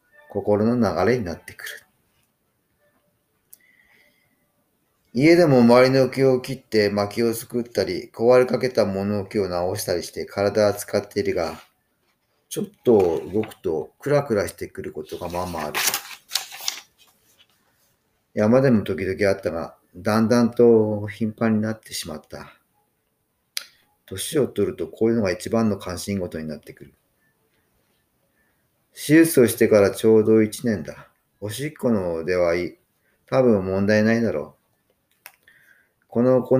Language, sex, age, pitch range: Japanese, male, 40-59, 100-125 Hz